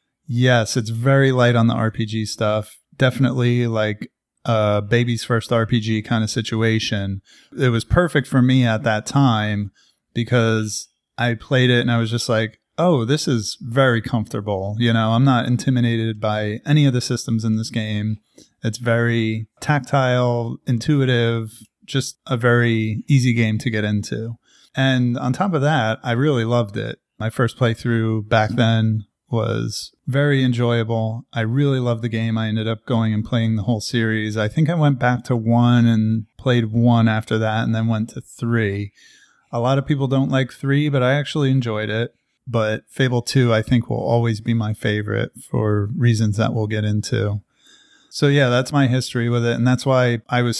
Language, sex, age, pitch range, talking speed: English, male, 30-49, 110-125 Hz, 180 wpm